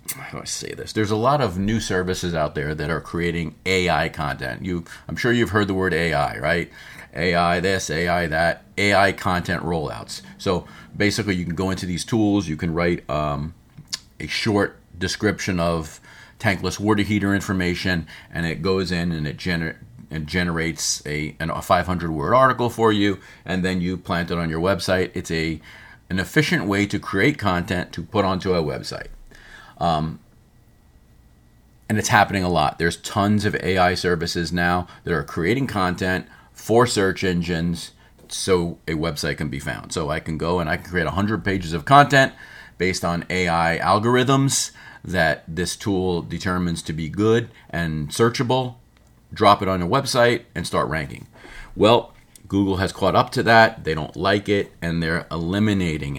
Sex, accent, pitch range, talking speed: male, American, 85-105 Hz, 175 wpm